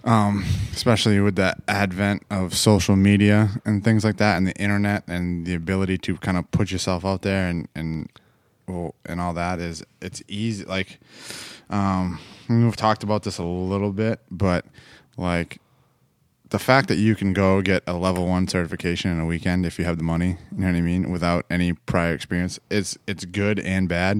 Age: 20-39